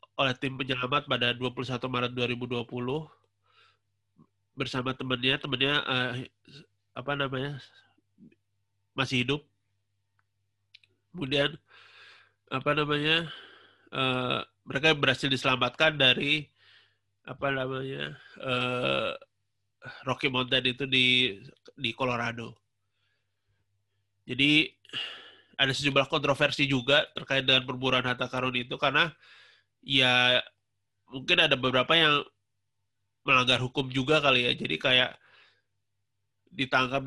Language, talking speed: Indonesian, 90 wpm